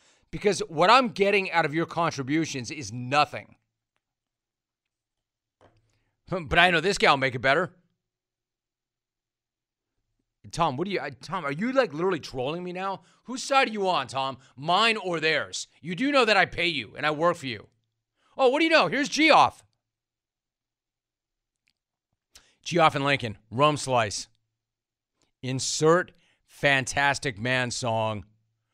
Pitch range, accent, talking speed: 115-170 Hz, American, 140 wpm